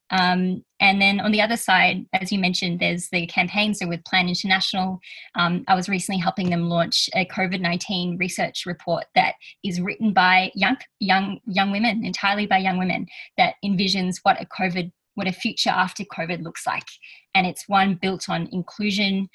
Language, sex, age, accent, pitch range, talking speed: English, female, 20-39, Australian, 180-205 Hz, 180 wpm